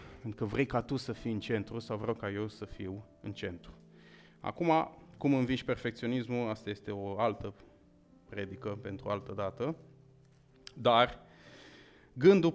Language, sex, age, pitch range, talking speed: Romanian, male, 30-49, 105-125 Hz, 155 wpm